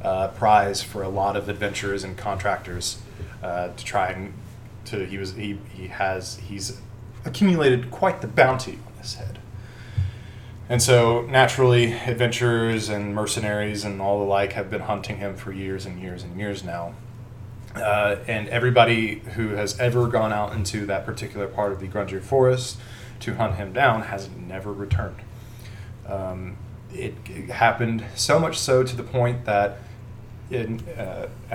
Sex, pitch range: male, 100-120 Hz